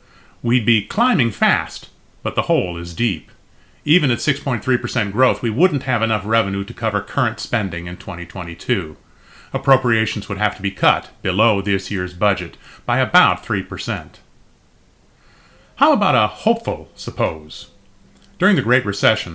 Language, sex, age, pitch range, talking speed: English, male, 30-49, 100-145 Hz, 145 wpm